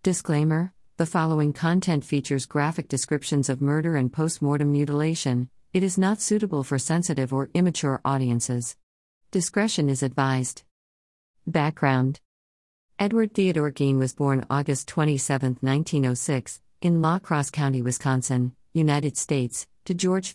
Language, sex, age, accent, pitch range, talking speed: English, female, 50-69, American, 130-165 Hz, 125 wpm